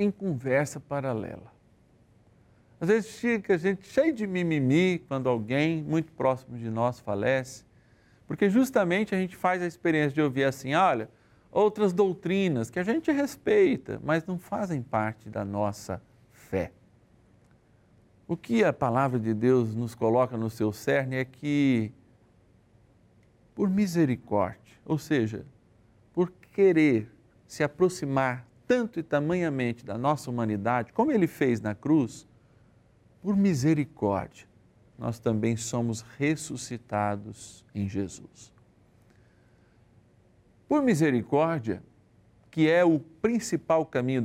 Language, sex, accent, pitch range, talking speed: Portuguese, male, Brazilian, 110-165 Hz, 120 wpm